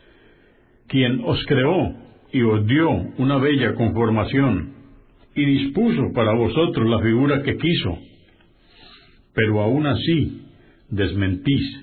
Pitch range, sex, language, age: 110-140 Hz, male, Spanish, 60-79